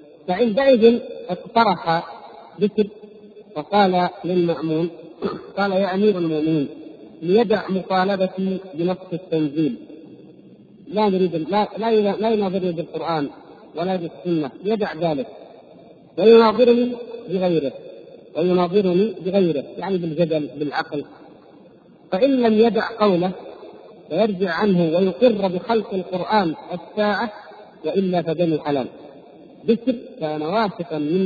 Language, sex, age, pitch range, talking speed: Arabic, male, 50-69, 165-215 Hz, 90 wpm